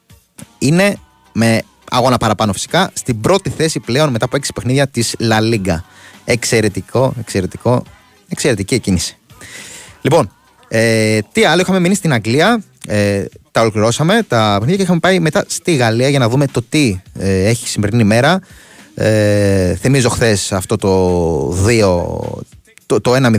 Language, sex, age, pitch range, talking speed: Greek, male, 30-49, 105-140 Hz, 140 wpm